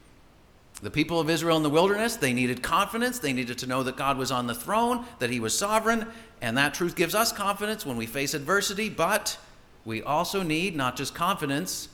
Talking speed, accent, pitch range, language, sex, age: 205 wpm, American, 95-140 Hz, English, male, 50-69